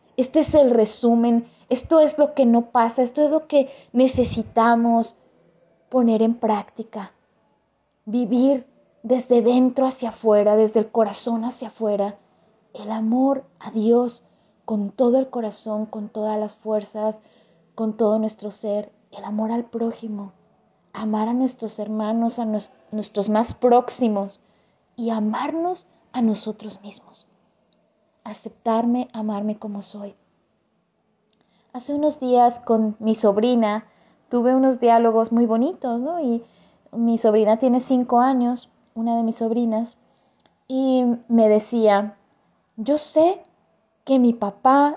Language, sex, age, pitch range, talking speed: Spanish, female, 20-39, 215-260 Hz, 125 wpm